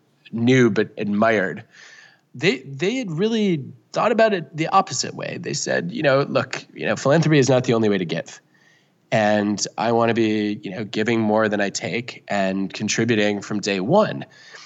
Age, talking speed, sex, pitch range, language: 20-39, 185 wpm, male, 95-115 Hz, English